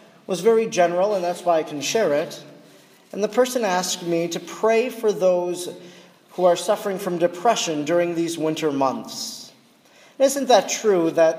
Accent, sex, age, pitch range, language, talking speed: American, male, 40-59, 175-220 Hz, English, 170 wpm